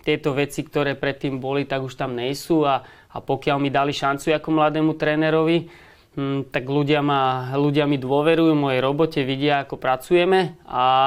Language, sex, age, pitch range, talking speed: Slovak, male, 30-49, 135-150 Hz, 165 wpm